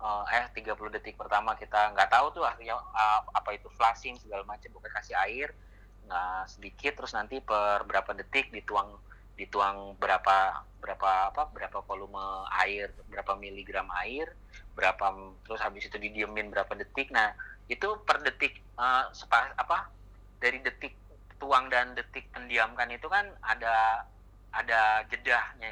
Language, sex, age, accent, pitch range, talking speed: Indonesian, male, 30-49, native, 100-115 Hz, 140 wpm